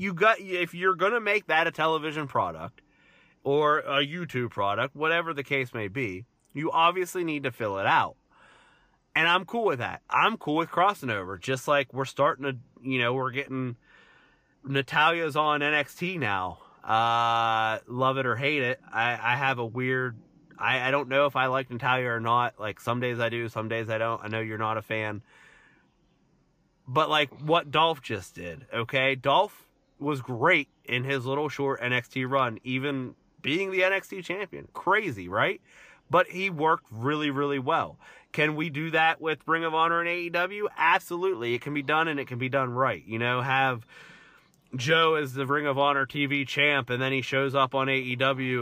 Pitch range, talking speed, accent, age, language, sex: 125-155 Hz, 190 wpm, American, 30-49, English, male